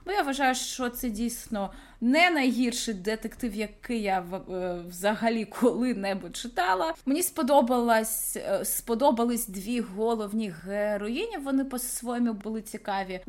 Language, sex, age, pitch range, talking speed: Ukrainian, female, 20-39, 220-270 Hz, 110 wpm